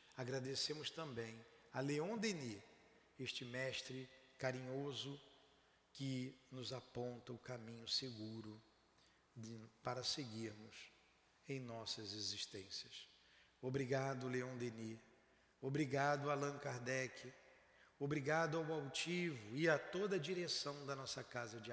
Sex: male